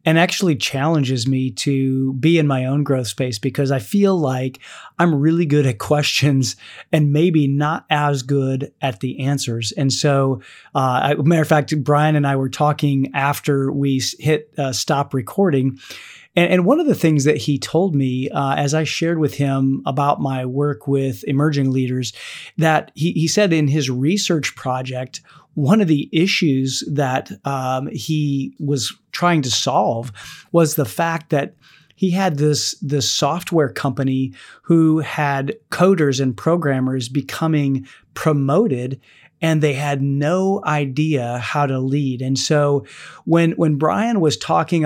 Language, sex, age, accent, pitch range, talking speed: English, male, 30-49, American, 135-160 Hz, 160 wpm